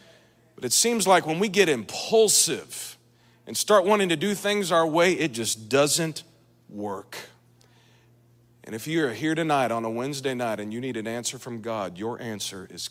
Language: English